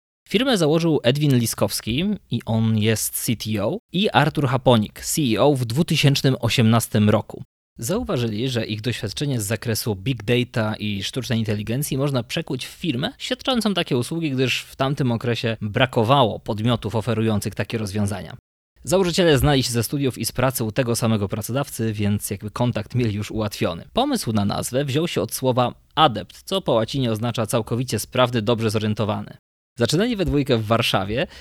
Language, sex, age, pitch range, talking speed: Polish, male, 20-39, 110-140 Hz, 155 wpm